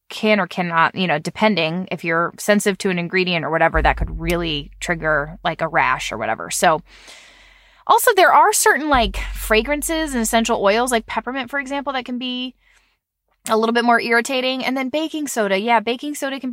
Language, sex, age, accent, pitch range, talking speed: English, female, 20-39, American, 195-260 Hz, 190 wpm